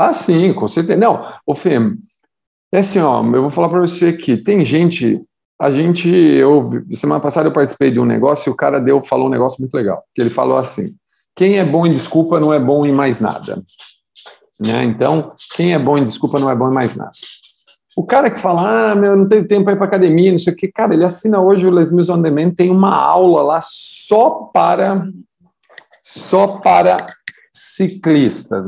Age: 50-69